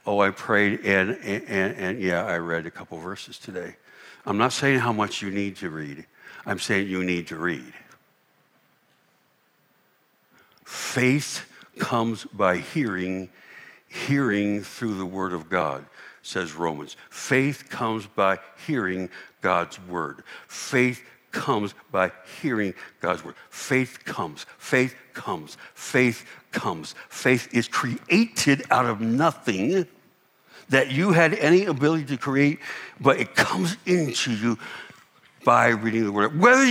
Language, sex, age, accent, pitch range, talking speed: English, male, 60-79, American, 100-145 Hz, 135 wpm